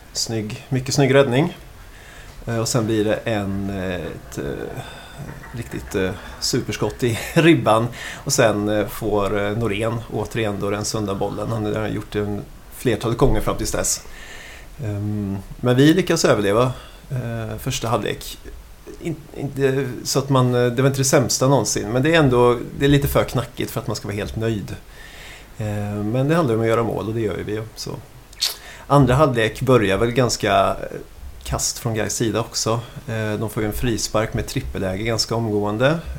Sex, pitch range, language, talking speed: male, 105-125 Hz, Swedish, 160 wpm